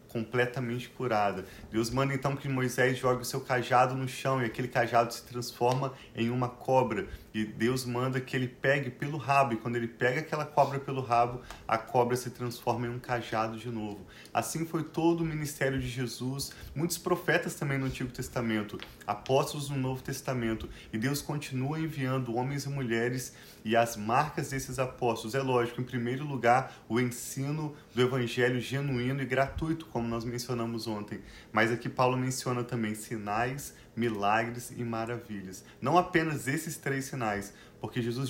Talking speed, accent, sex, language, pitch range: 170 wpm, Brazilian, male, Portuguese, 115-135 Hz